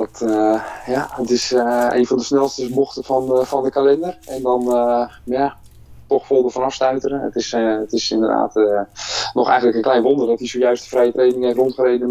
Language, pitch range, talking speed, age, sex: Dutch, 100-120 Hz, 215 wpm, 20-39, male